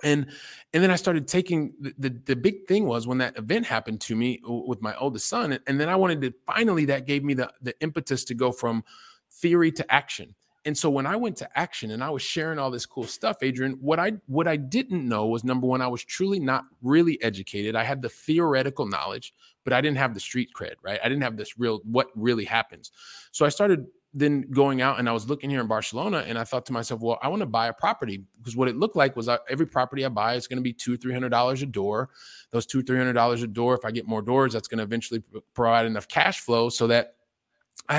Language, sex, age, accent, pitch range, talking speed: English, male, 30-49, American, 115-145 Hz, 260 wpm